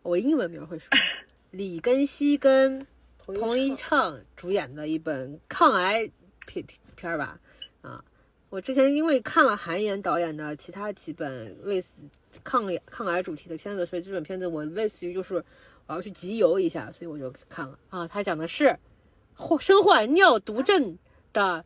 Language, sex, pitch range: Chinese, female, 170-255 Hz